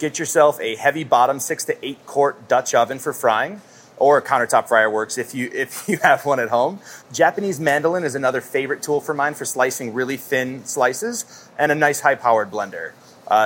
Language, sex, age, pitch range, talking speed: English, male, 30-49, 130-175 Hz, 200 wpm